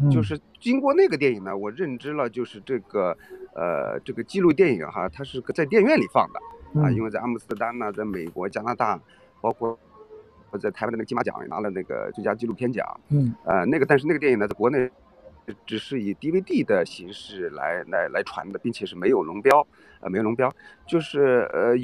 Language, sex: Chinese, male